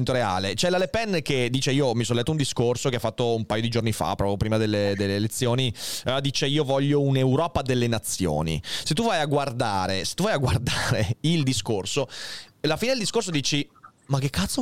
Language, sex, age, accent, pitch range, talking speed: Italian, male, 30-49, native, 115-160 Hz, 220 wpm